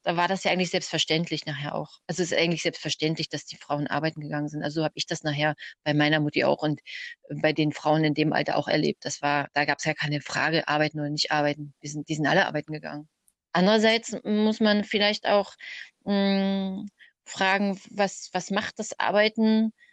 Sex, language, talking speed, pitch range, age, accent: female, German, 210 wpm, 160-230 Hz, 30-49, German